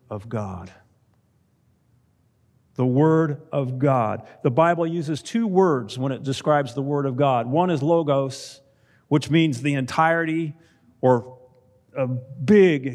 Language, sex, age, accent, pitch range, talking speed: English, male, 50-69, American, 125-165 Hz, 130 wpm